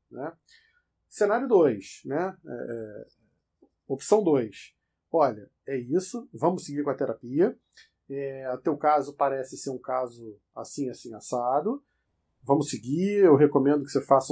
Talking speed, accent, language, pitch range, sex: 130 wpm, Brazilian, Portuguese, 135-180 Hz, male